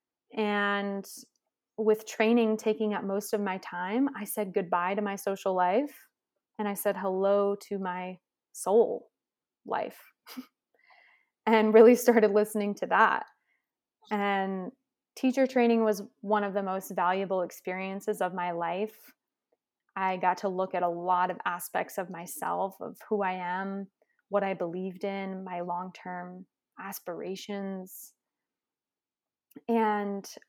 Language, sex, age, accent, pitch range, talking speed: English, female, 20-39, American, 190-220 Hz, 130 wpm